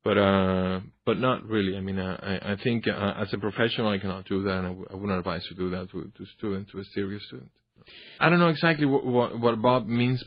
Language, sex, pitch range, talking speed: English, male, 100-135 Hz, 250 wpm